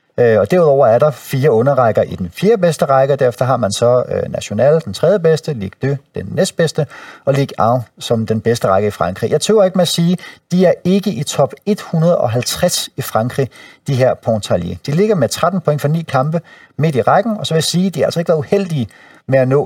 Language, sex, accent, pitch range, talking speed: Danish, male, native, 120-170 Hz, 230 wpm